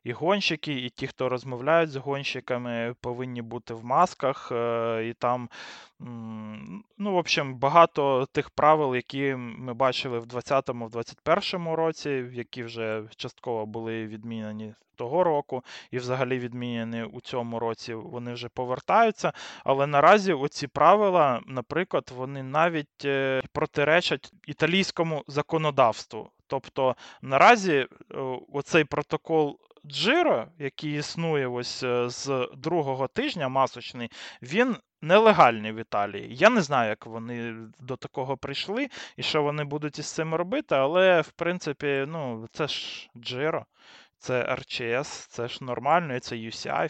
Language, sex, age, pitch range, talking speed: Ukrainian, male, 20-39, 120-155 Hz, 130 wpm